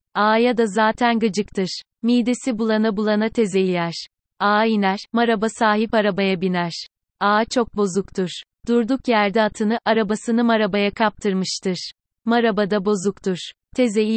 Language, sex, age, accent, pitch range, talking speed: Turkish, female, 30-49, native, 195-230 Hz, 115 wpm